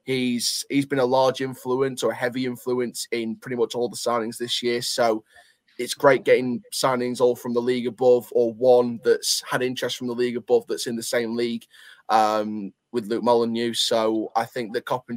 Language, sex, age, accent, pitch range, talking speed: English, male, 20-39, British, 115-130 Hz, 200 wpm